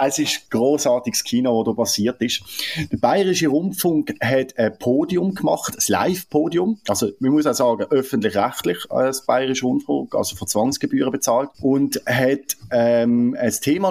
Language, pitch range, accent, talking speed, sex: German, 120-190 Hz, German, 155 wpm, male